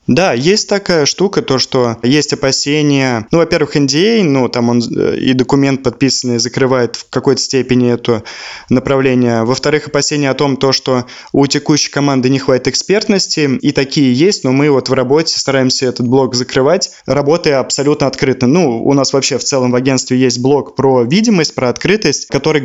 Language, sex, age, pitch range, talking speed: Russian, male, 20-39, 125-145 Hz, 170 wpm